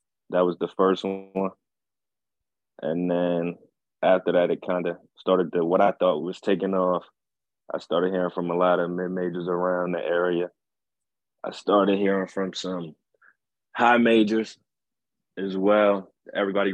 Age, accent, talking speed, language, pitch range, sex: 20-39, American, 145 wpm, English, 90-100 Hz, male